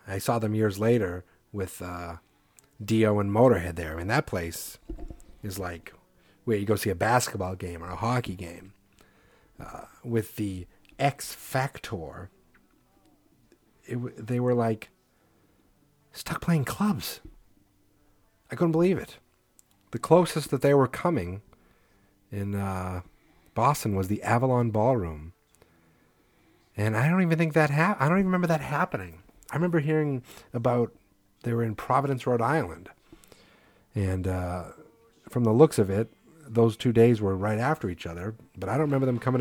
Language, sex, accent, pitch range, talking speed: English, male, American, 95-130 Hz, 155 wpm